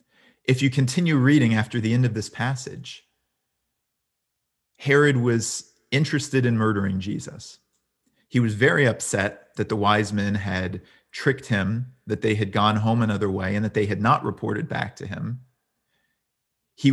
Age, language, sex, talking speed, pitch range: 40-59, English, male, 155 wpm, 105-125 Hz